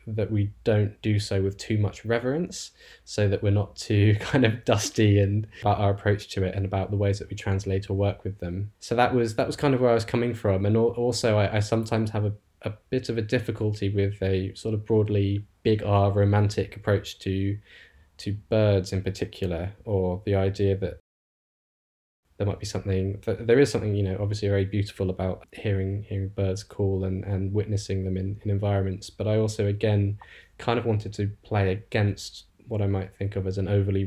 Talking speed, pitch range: 210 wpm, 95-105 Hz